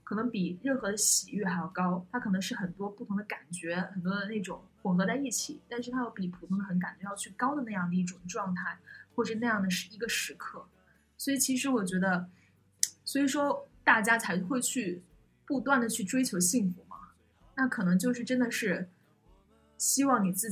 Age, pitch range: 20-39, 180-240 Hz